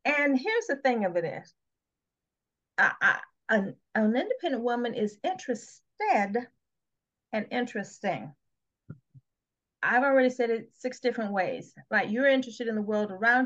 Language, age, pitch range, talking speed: English, 40-59, 200-260 Hz, 145 wpm